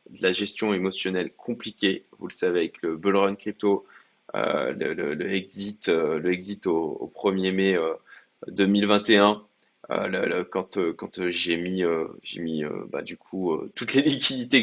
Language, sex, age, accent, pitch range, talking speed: French, male, 20-39, French, 95-105 Hz, 150 wpm